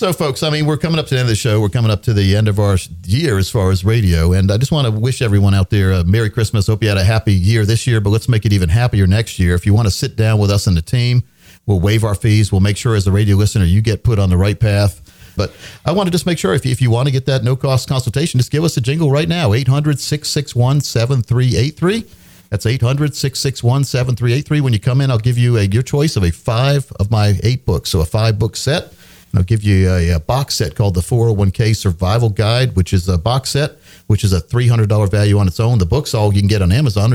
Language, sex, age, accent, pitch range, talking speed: English, male, 50-69, American, 100-125 Hz, 270 wpm